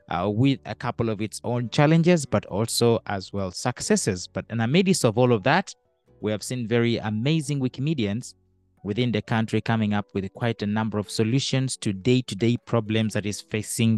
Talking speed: 195 wpm